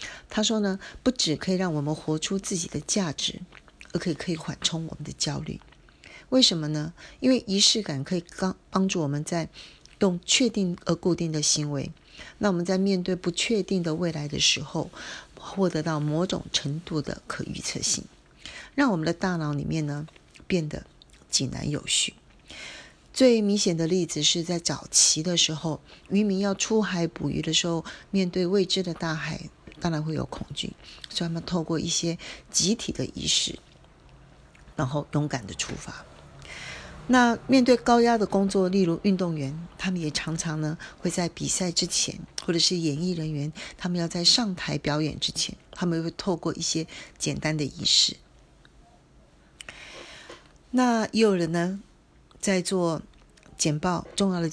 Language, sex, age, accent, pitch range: Chinese, female, 40-59, native, 155-195 Hz